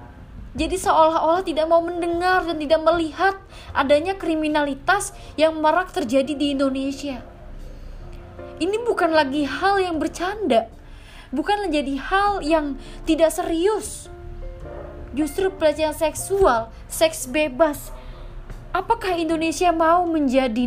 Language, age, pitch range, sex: Indonesian, 20-39, 230-325 Hz, female